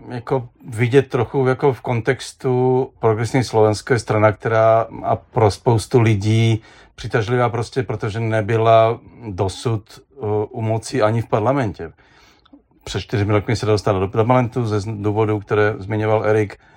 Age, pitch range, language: 40-59, 110-140 Hz, Czech